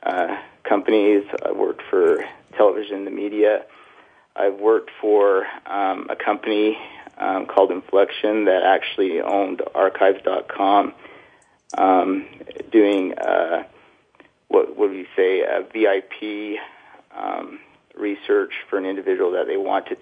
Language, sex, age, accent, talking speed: English, male, 40-59, American, 125 wpm